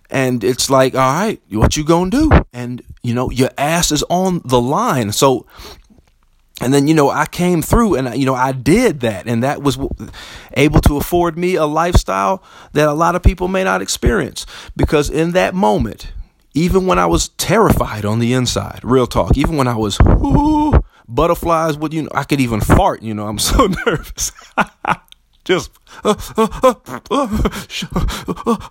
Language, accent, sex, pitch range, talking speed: English, American, male, 100-140 Hz, 170 wpm